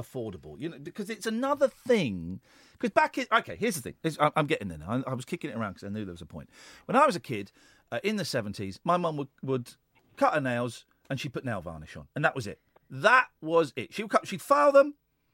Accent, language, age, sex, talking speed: British, English, 40-59, male, 255 wpm